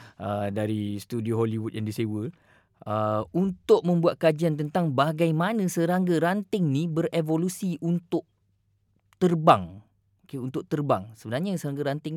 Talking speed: 120 wpm